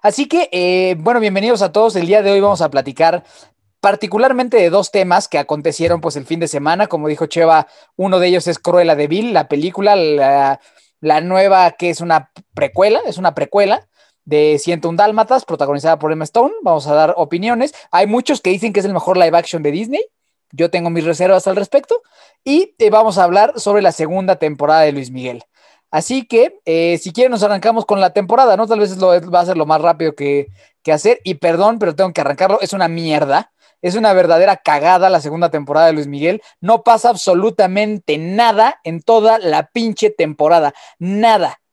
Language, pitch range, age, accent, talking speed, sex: Spanish, 165-225 Hz, 20-39, Mexican, 205 wpm, male